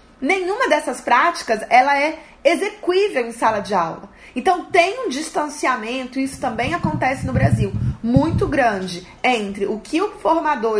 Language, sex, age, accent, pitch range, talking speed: Portuguese, female, 20-39, Brazilian, 250-320 Hz, 150 wpm